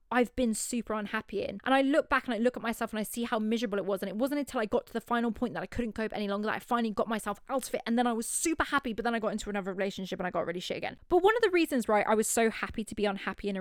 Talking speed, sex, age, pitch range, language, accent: 350 wpm, female, 20-39, 205-250 Hz, English, British